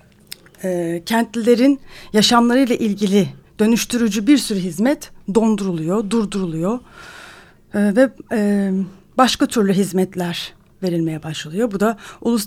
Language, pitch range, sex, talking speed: Turkish, 185-235 Hz, female, 100 wpm